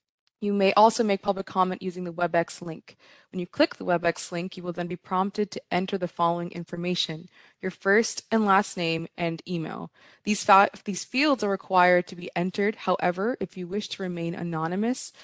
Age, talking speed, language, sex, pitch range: 20-39, 190 wpm, English, female, 170-205 Hz